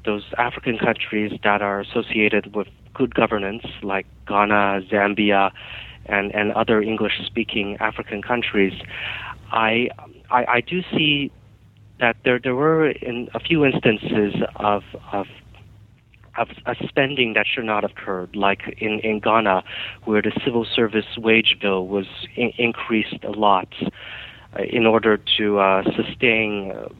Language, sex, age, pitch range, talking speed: English, male, 30-49, 105-125 Hz, 140 wpm